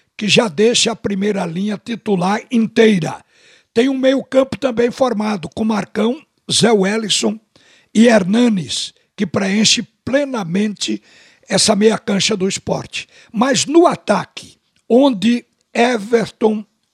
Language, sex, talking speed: Portuguese, male, 115 wpm